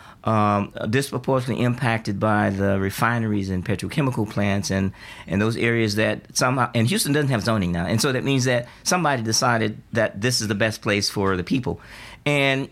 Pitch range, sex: 105-130 Hz, male